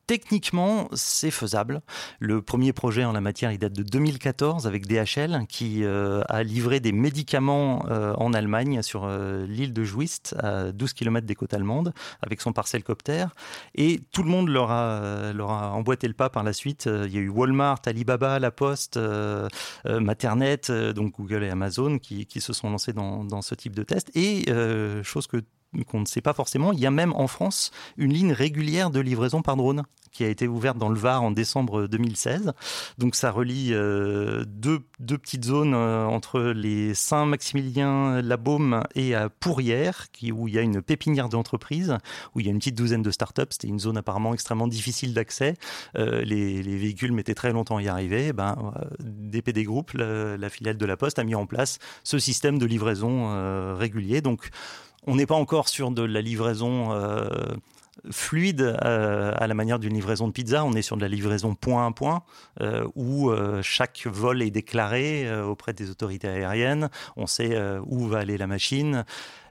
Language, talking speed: French, 195 wpm